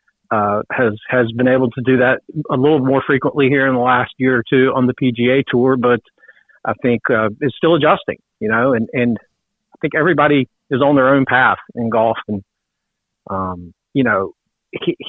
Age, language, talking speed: 40-59, English, 205 wpm